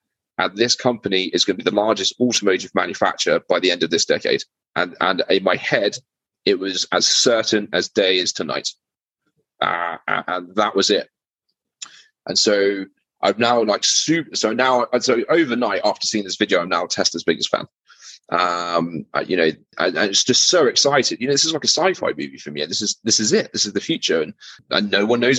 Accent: British